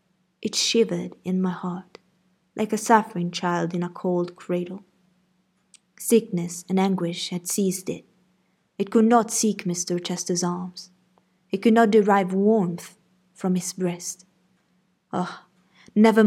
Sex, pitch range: female, 180-210 Hz